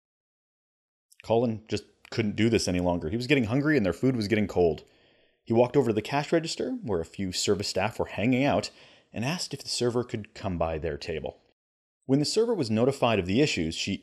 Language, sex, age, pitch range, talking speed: English, male, 30-49, 95-145 Hz, 220 wpm